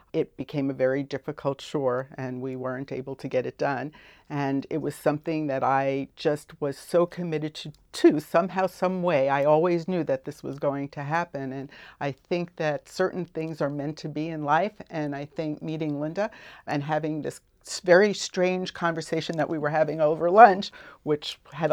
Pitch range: 135-160 Hz